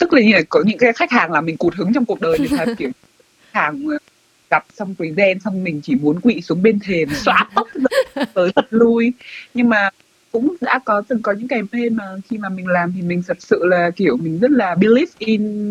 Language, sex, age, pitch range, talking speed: Vietnamese, female, 20-39, 165-240 Hz, 245 wpm